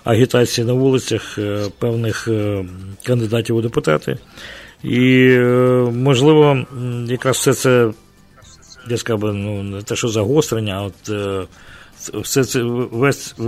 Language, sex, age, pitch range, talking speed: English, male, 50-69, 105-125 Hz, 105 wpm